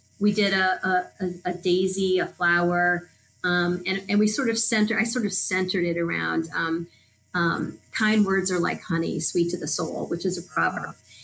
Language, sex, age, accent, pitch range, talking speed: English, female, 30-49, American, 170-210 Hz, 200 wpm